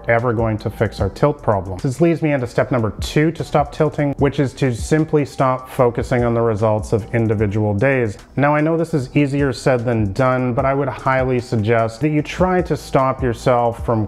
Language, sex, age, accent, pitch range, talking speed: English, male, 30-49, American, 115-140 Hz, 215 wpm